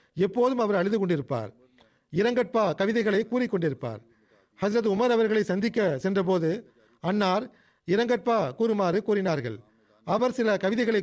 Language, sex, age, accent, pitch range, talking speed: Tamil, male, 40-59, native, 175-225 Hz, 110 wpm